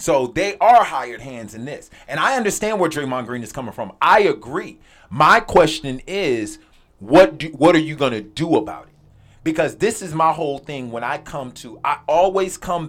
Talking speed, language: 205 wpm, English